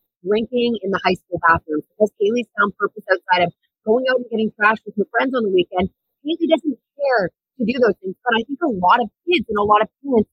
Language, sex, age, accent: English, female, 30-49, American